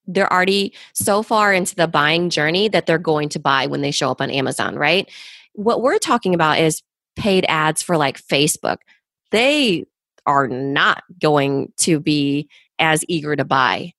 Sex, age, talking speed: female, 20-39, 170 wpm